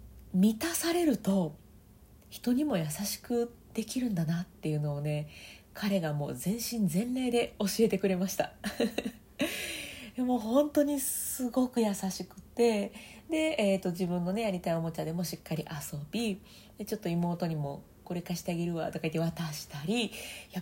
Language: Japanese